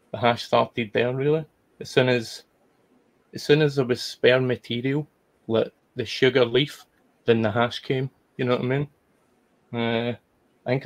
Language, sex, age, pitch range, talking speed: English, male, 20-39, 120-140 Hz, 165 wpm